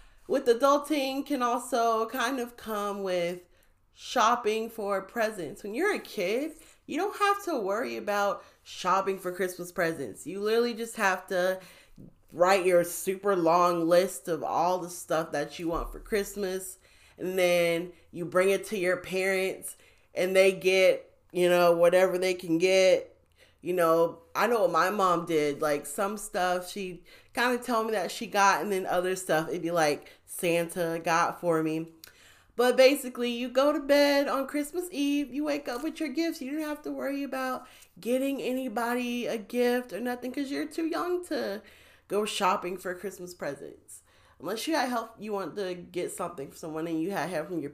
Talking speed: 180 wpm